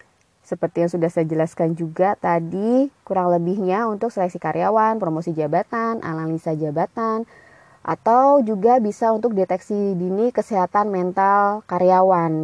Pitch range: 160-195 Hz